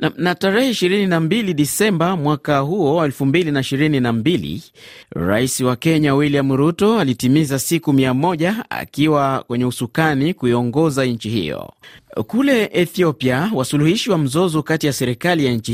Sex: male